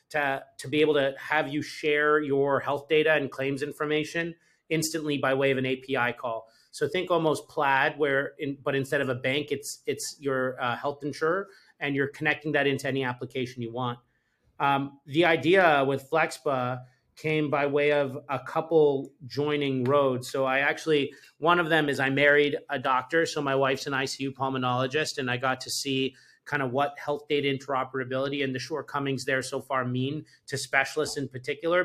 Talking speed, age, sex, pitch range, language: 185 wpm, 30-49, male, 135-150 Hz, English